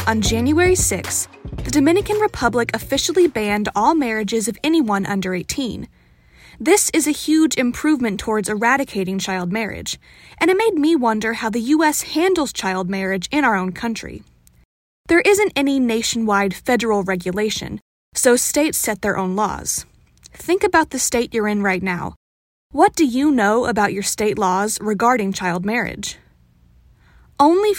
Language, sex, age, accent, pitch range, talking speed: English, female, 20-39, American, 195-285 Hz, 150 wpm